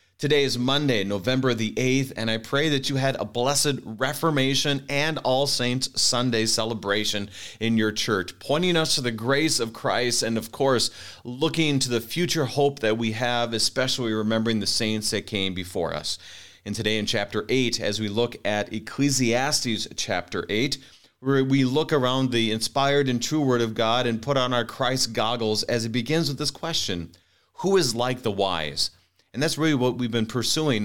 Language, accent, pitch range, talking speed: English, American, 110-135 Hz, 185 wpm